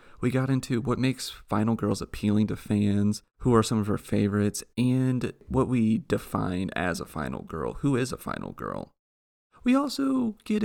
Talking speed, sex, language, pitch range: 180 wpm, male, English, 100-135 Hz